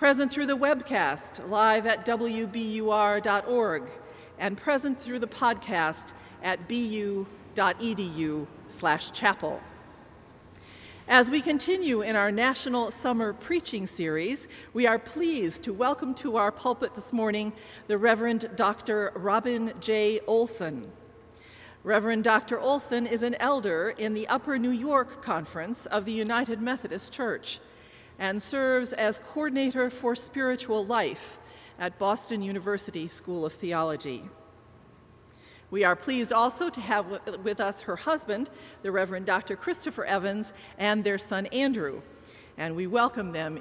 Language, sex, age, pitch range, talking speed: English, female, 40-59, 185-245 Hz, 130 wpm